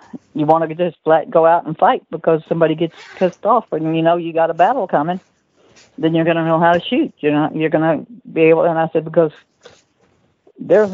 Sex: female